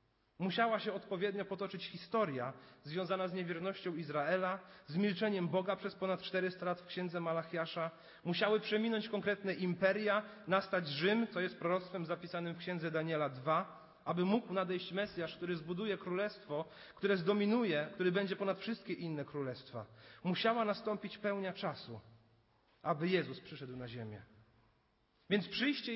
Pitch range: 165-220 Hz